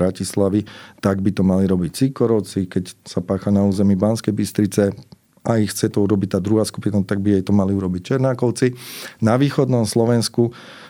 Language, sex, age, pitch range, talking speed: Slovak, male, 40-59, 100-120 Hz, 175 wpm